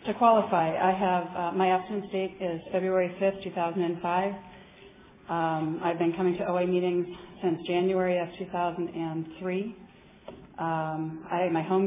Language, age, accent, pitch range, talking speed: English, 40-59, American, 170-185 Hz, 135 wpm